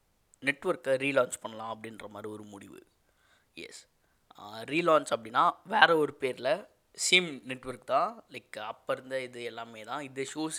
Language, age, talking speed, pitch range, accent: Tamil, 20-39, 135 wpm, 120-145 Hz, native